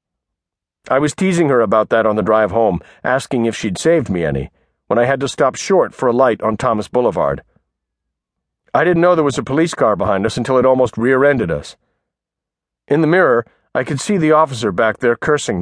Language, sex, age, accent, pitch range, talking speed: English, male, 50-69, American, 105-150 Hz, 210 wpm